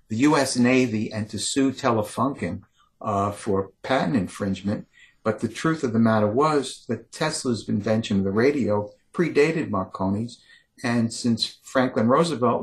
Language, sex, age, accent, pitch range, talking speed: English, male, 60-79, American, 105-125 Hz, 145 wpm